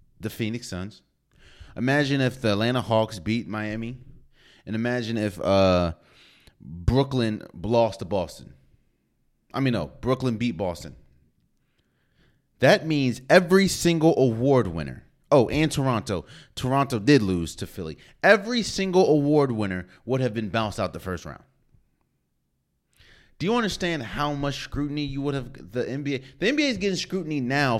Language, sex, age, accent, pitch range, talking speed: English, male, 30-49, American, 100-140 Hz, 145 wpm